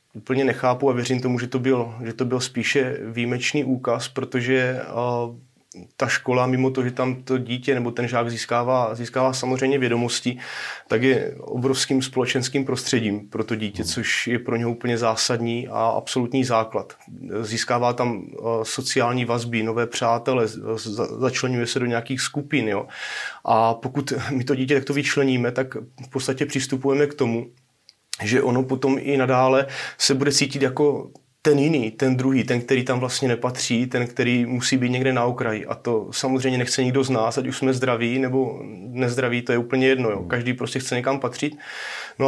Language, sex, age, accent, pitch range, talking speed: Czech, male, 30-49, native, 120-135 Hz, 165 wpm